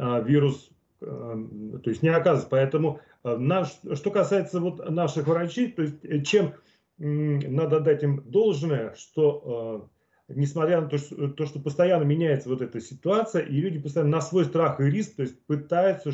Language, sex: Russian, male